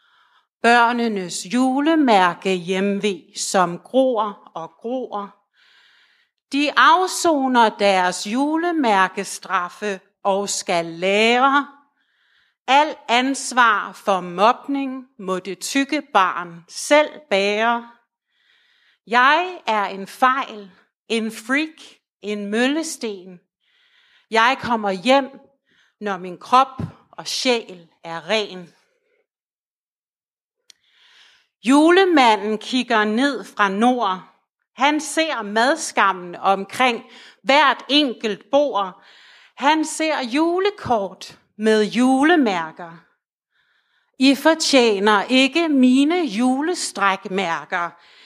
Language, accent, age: Danish, native, 60-79